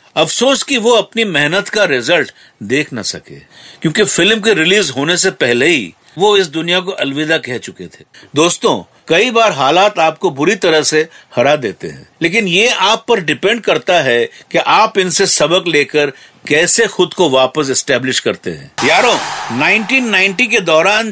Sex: male